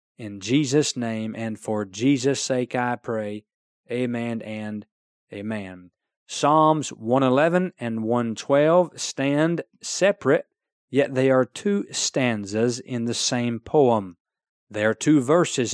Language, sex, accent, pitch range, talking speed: English, male, American, 115-145 Hz, 120 wpm